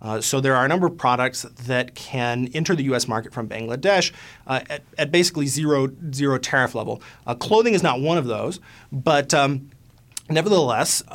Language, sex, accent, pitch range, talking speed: English, male, American, 120-150 Hz, 185 wpm